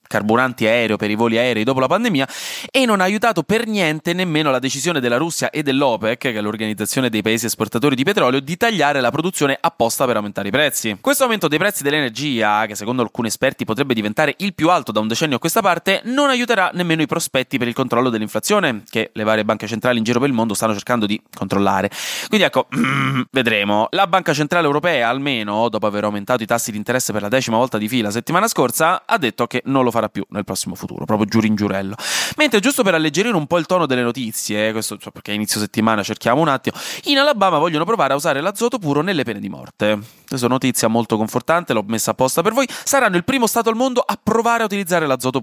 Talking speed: 230 wpm